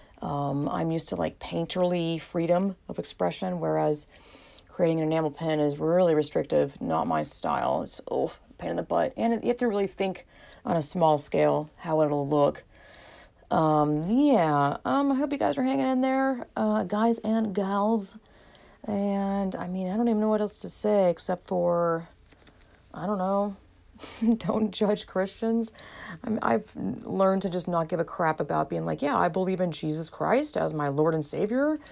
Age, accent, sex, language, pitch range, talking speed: 40-59, American, female, English, 160-215 Hz, 180 wpm